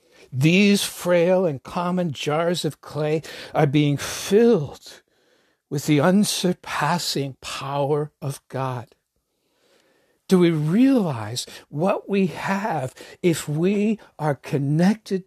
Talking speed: 100 wpm